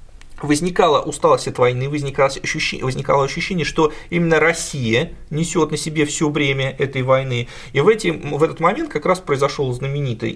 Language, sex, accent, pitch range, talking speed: Russian, male, native, 125-155 Hz, 160 wpm